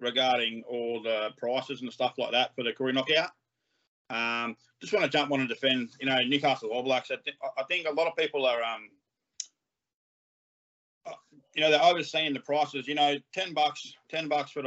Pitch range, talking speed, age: 120-145 Hz, 195 wpm, 20-39